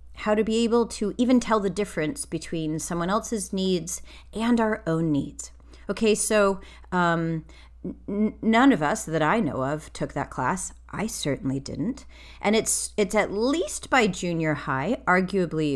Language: English